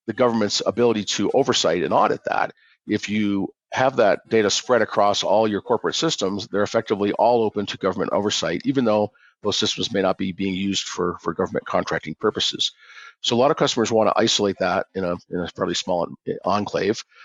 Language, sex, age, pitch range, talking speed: English, male, 50-69, 100-115 Hz, 190 wpm